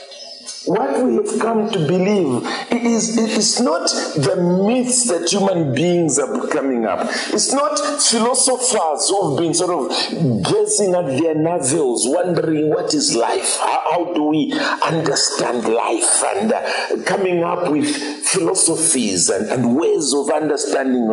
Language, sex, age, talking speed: English, male, 50-69, 145 wpm